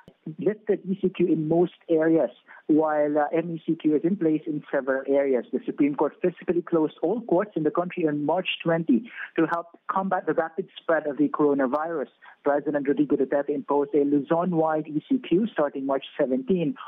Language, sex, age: English, male, 50-69